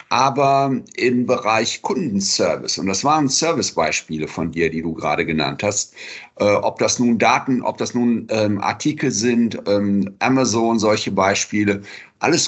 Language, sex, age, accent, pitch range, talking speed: German, male, 50-69, German, 110-135 Hz, 150 wpm